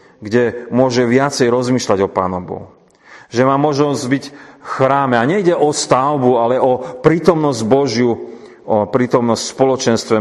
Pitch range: 115-140 Hz